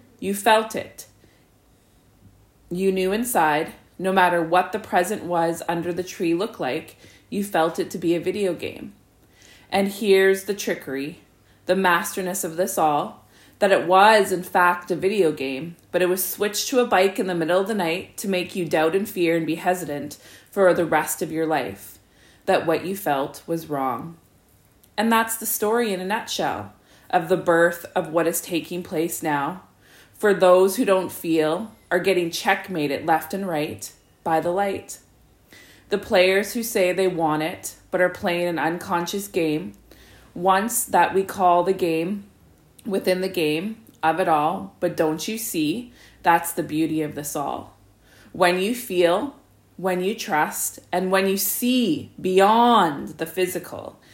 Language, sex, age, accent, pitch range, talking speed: English, female, 20-39, American, 160-195 Hz, 170 wpm